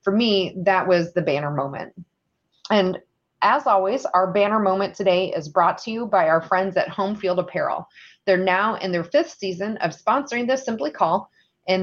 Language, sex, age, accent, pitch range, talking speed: English, female, 30-49, American, 180-230 Hz, 185 wpm